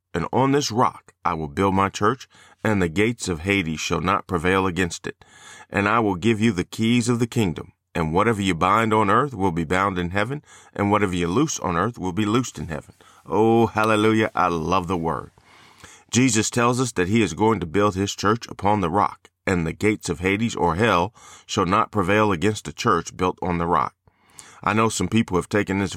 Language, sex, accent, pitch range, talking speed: English, male, American, 90-110 Hz, 220 wpm